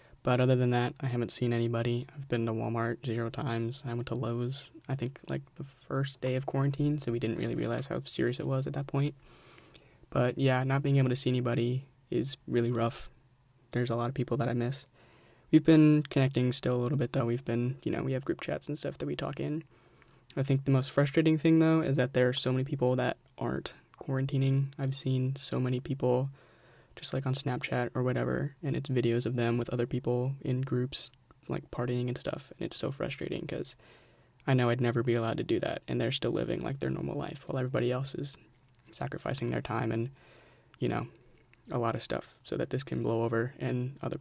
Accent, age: American, 20-39